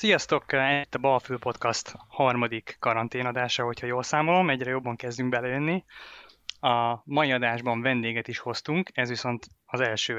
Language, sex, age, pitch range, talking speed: Hungarian, male, 20-39, 115-135 Hz, 140 wpm